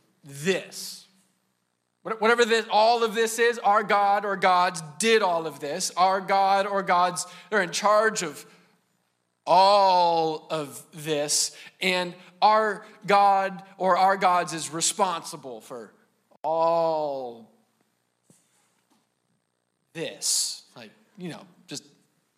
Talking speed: 110 wpm